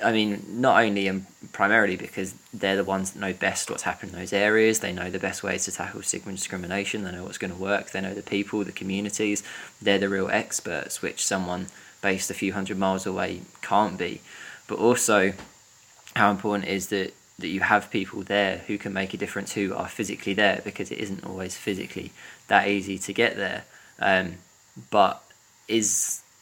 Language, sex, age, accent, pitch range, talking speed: English, male, 20-39, British, 95-100 Hz, 200 wpm